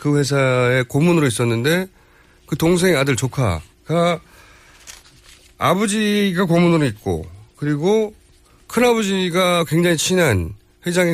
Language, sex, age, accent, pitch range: Korean, male, 40-59, native, 105-175 Hz